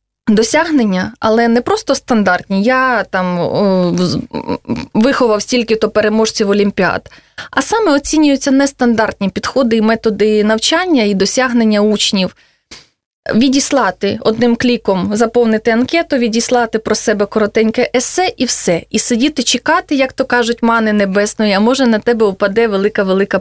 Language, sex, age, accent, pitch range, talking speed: Russian, female, 20-39, native, 200-245 Hz, 125 wpm